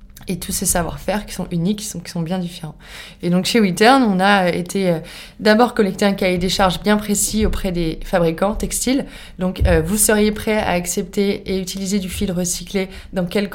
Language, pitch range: French, 175-215 Hz